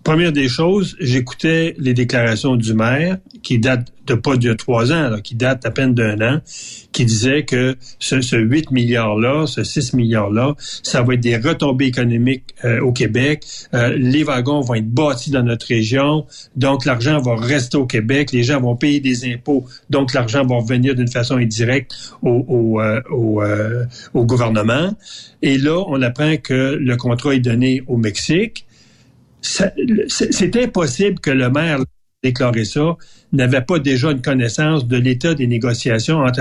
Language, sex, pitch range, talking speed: French, male, 125-155 Hz, 175 wpm